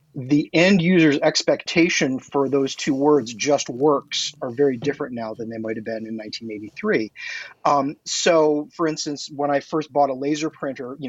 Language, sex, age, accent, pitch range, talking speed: English, male, 30-49, American, 130-155 Hz, 175 wpm